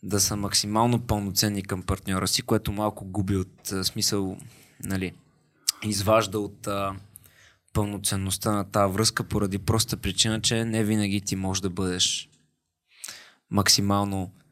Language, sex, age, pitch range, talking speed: Bulgarian, male, 20-39, 95-110 Hz, 130 wpm